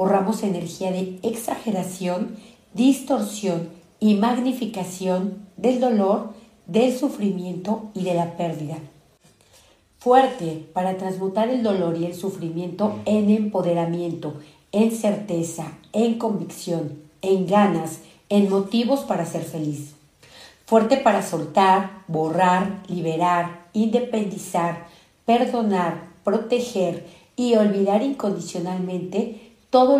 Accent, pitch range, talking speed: Mexican, 170-210 Hz, 95 wpm